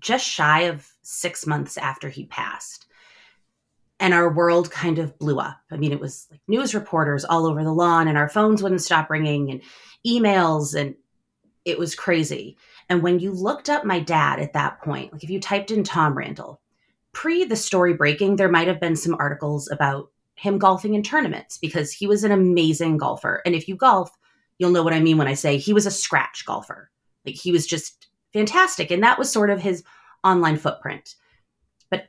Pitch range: 150-190 Hz